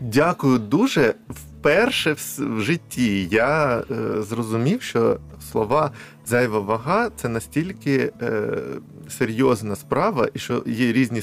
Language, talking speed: Ukrainian, 120 wpm